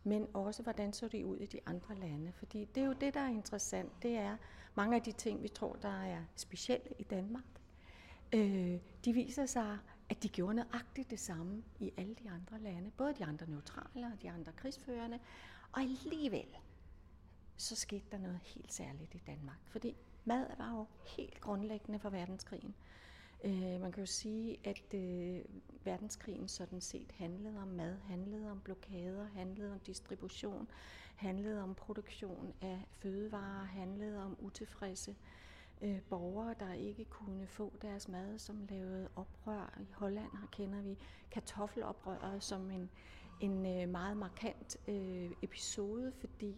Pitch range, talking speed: 185-215 Hz, 160 wpm